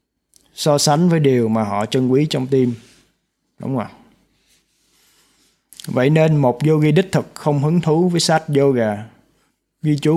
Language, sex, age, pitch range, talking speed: Vietnamese, male, 20-39, 115-145 Hz, 160 wpm